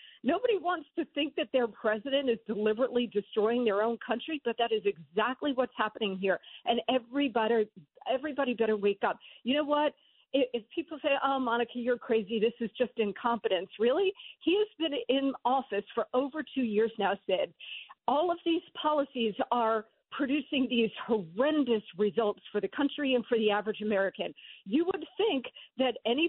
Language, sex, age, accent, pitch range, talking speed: English, female, 50-69, American, 225-290 Hz, 170 wpm